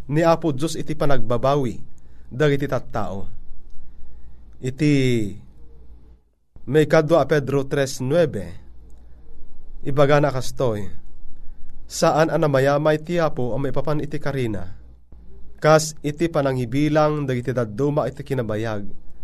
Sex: male